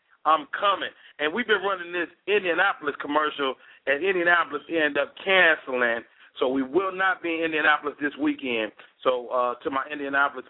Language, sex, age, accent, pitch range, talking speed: English, male, 40-59, American, 140-190 Hz, 160 wpm